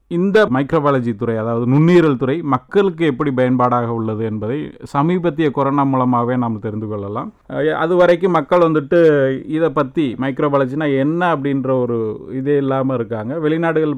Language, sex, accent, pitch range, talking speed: English, male, Indian, 125-165 Hz, 95 wpm